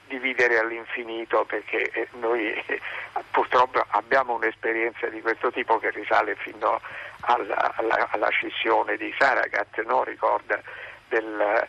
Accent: native